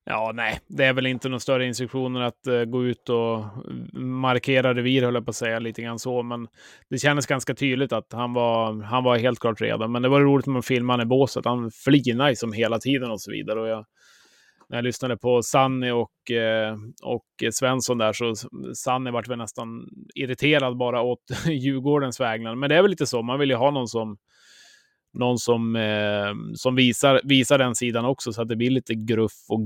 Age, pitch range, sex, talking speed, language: 20-39, 115-130 Hz, male, 210 wpm, Swedish